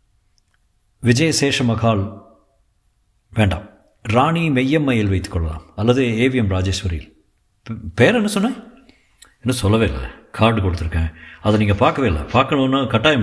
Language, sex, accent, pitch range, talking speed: Tamil, male, native, 95-120 Hz, 115 wpm